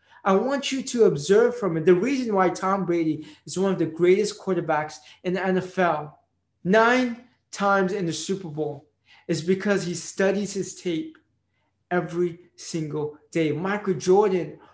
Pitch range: 155-195 Hz